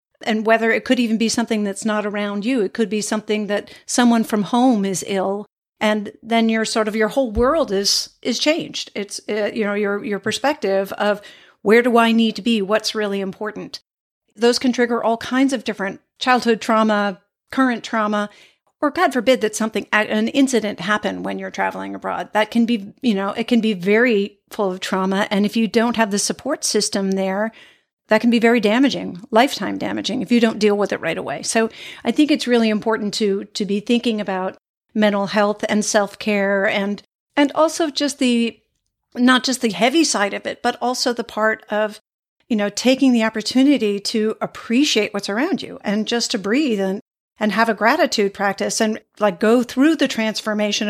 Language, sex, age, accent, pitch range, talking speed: English, female, 50-69, American, 205-240 Hz, 195 wpm